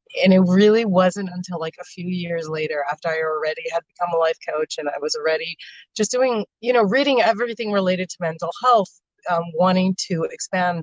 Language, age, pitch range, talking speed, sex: English, 30-49, 165-205 Hz, 200 wpm, female